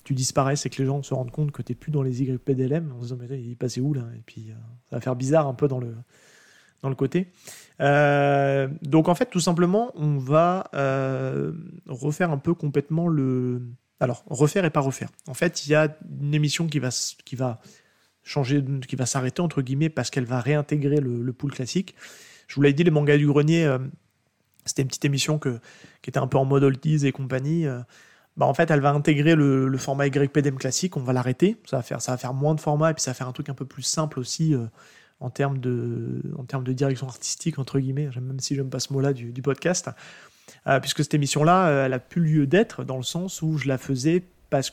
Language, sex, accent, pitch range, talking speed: French, male, French, 130-155 Hz, 235 wpm